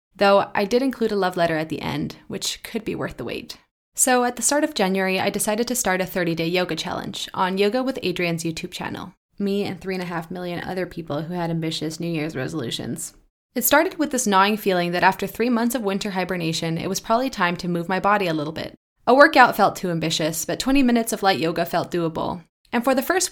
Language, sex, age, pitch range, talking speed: English, female, 20-39, 170-225 Hz, 230 wpm